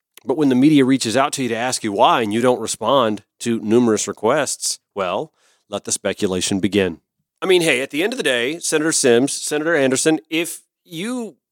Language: English